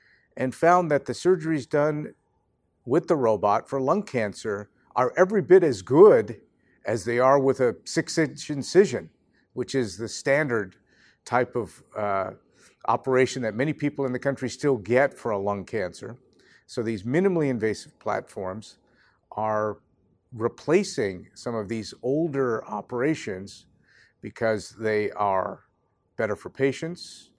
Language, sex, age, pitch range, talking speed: English, male, 50-69, 110-140 Hz, 140 wpm